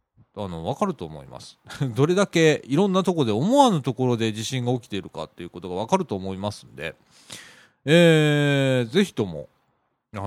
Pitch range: 95-150 Hz